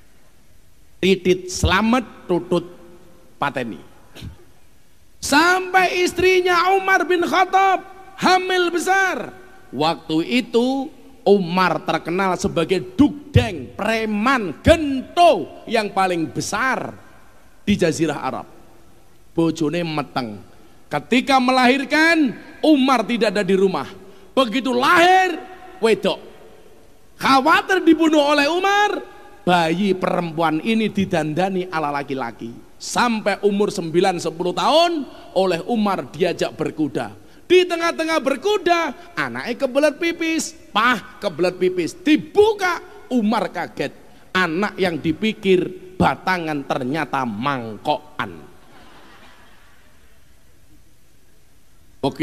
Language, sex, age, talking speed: Indonesian, male, 40-59, 85 wpm